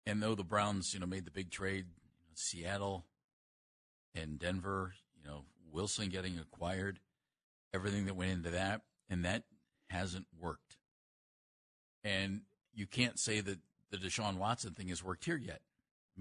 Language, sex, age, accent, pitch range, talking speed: English, male, 50-69, American, 95-125 Hz, 160 wpm